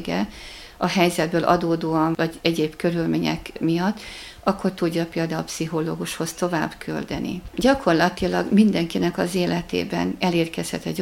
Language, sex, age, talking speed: Hungarian, female, 50-69, 110 wpm